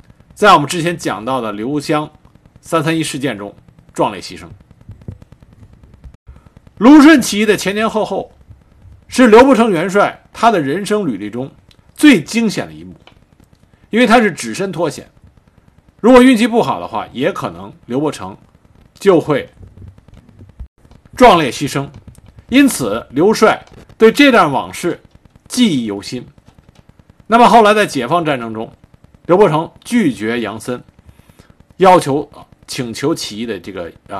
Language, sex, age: Chinese, male, 50-69